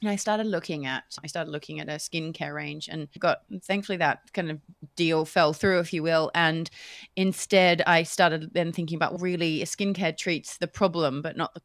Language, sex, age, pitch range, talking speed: English, female, 30-49, 155-180 Hz, 205 wpm